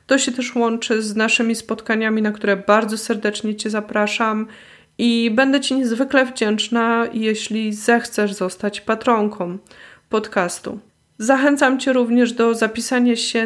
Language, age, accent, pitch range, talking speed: Polish, 20-39, native, 215-240 Hz, 130 wpm